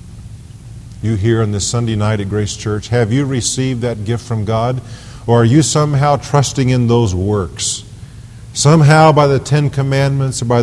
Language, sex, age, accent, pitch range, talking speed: English, male, 50-69, American, 105-125 Hz, 175 wpm